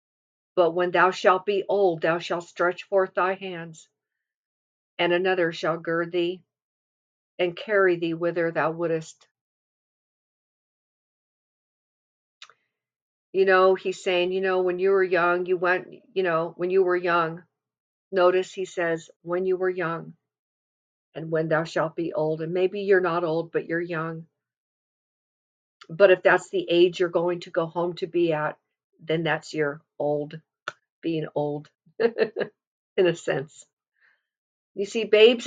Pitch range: 165-195 Hz